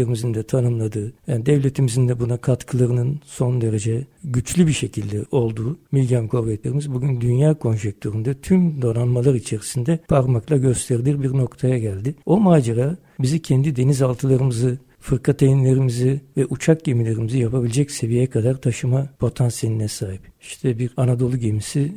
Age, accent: 60-79, native